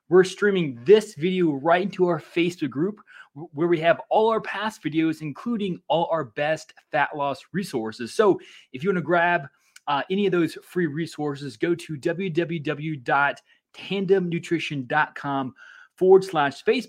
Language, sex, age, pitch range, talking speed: English, male, 20-39, 145-180 Hz, 150 wpm